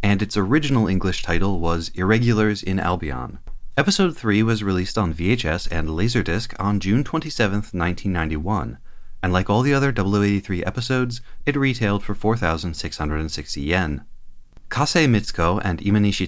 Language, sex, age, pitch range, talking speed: English, male, 30-49, 85-115 Hz, 135 wpm